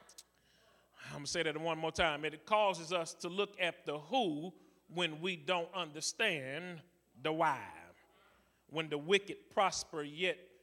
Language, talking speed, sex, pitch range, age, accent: English, 150 wpm, male, 165-200 Hz, 30-49, American